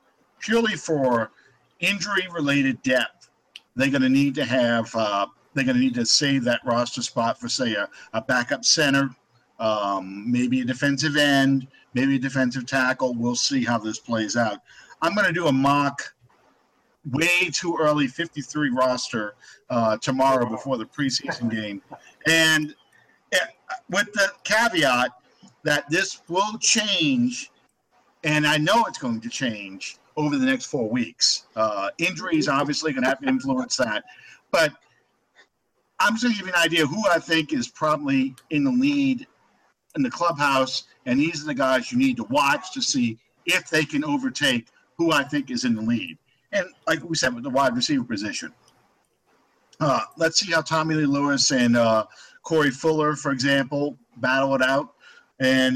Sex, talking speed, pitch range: male, 165 wpm, 130-170 Hz